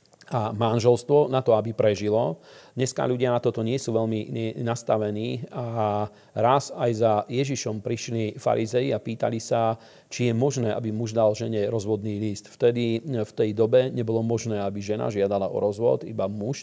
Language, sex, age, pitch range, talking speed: Slovak, male, 40-59, 105-120 Hz, 165 wpm